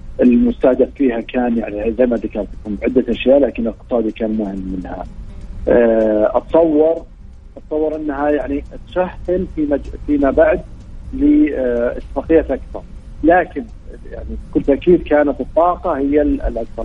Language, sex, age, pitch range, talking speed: Arabic, male, 50-69, 120-150 Hz, 110 wpm